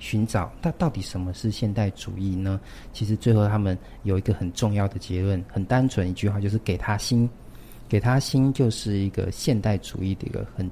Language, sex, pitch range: Chinese, male, 95-120 Hz